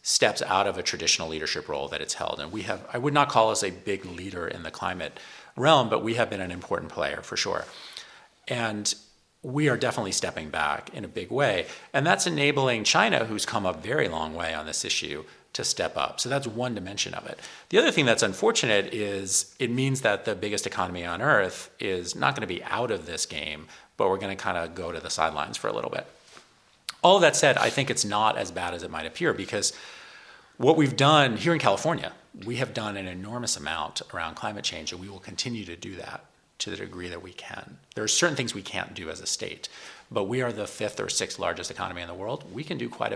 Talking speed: 240 wpm